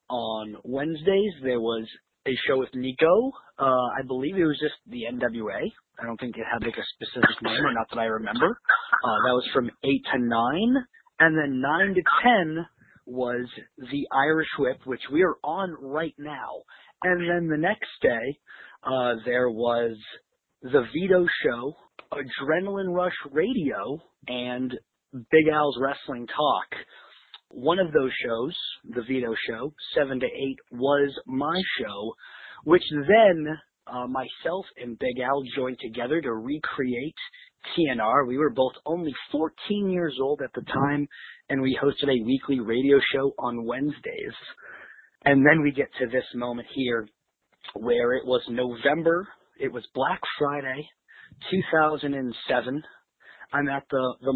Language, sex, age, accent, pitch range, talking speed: English, male, 30-49, American, 125-160 Hz, 150 wpm